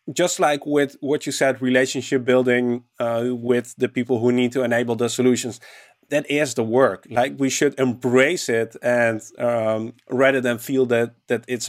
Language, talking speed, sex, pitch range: English, 180 wpm, male, 120-145 Hz